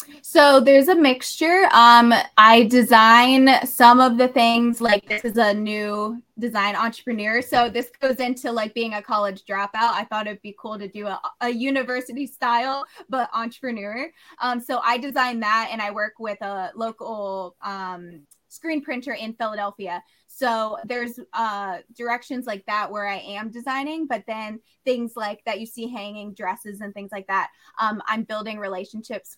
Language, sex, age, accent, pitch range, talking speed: English, female, 20-39, American, 205-245 Hz, 170 wpm